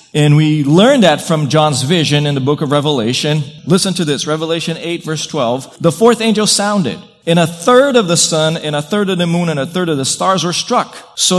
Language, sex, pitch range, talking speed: English, male, 155-195 Hz, 230 wpm